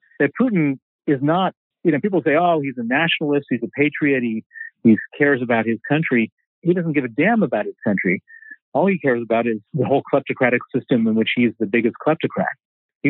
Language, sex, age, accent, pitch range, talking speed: English, male, 40-59, American, 125-165 Hz, 205 wpm